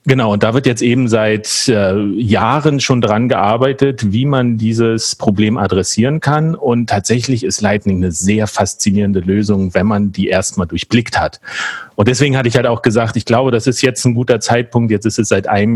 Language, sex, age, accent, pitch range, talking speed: German, male, 40-59, German, 105-125 Hz, 200 wpm